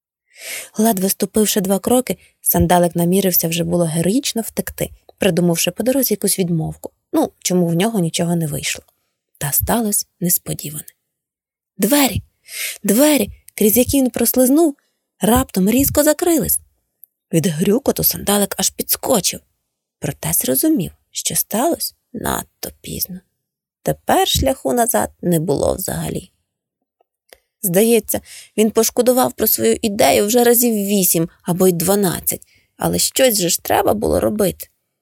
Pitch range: 165-225 Hz